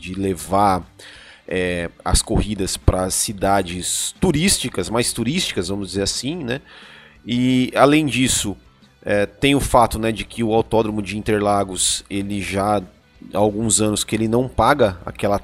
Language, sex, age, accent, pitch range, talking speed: Portuguese, male, 30-49, Brazilian, 100-140 Hz, 150 wpm